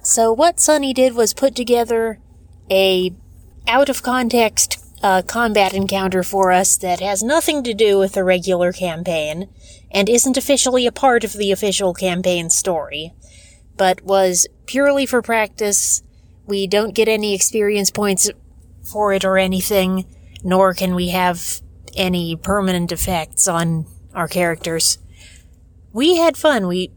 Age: 30-49